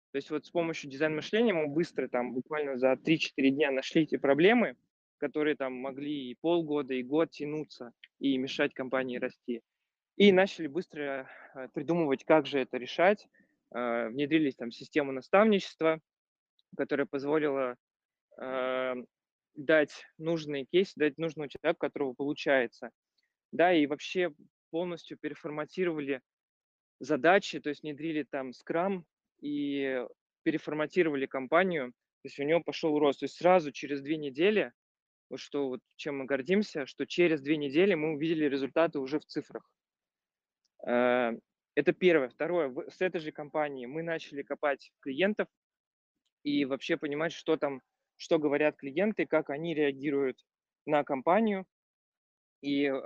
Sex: male